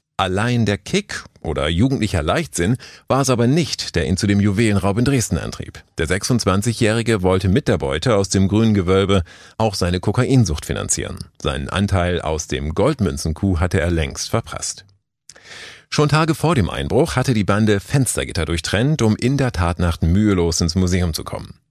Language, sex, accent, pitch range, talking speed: German, male, German, 90-120 Hz, 165 wpm